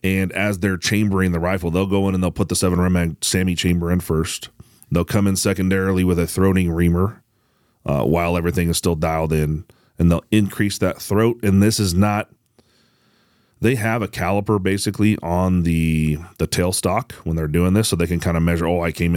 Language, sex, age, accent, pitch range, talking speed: English, male, 30-49, American, 85-100 Hz, 205 wpm